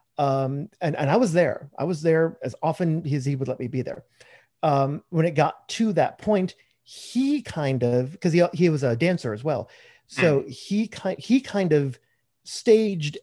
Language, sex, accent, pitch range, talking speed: English, male, American, 135-175 Hz, 195 wpm